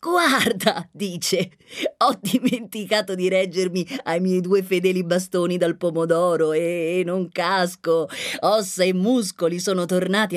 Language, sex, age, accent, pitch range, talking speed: Italian, female, 30-49, native, 145-190 Hz, 120 wpm